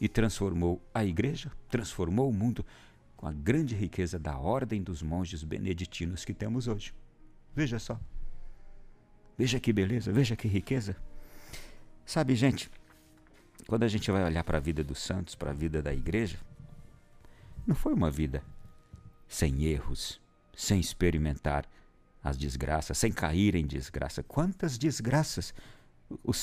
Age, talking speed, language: 60-79, 140 wpm, Portuguese